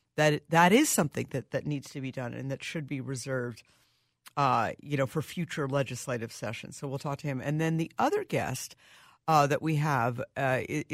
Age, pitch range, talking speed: 50-69, 130-155 Hz, 205 wpm